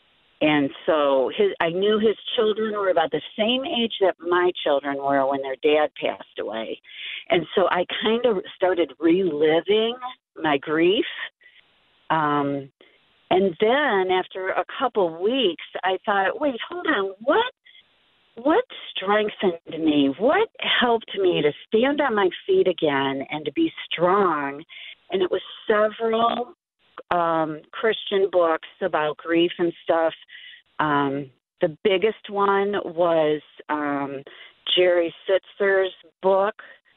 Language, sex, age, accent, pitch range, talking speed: English, female, 50-69, American, 150-215 Hz, 130 wpm